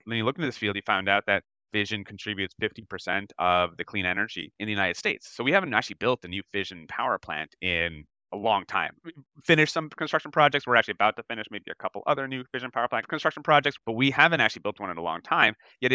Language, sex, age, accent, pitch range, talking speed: English, male, 30-49, American, 95-130 Hz, 250 wpm